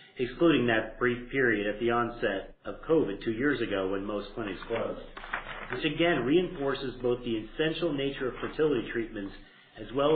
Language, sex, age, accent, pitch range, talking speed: English, male, 40-59, American, 115-145 Hz, 165 wpm